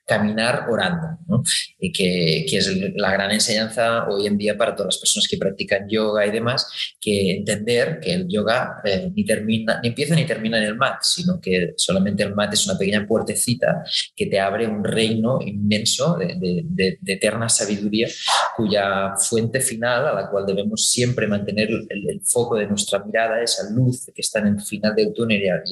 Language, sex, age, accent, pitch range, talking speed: Spanish, male, 20-39, Spanish, 100-120 Hz, 190 wpm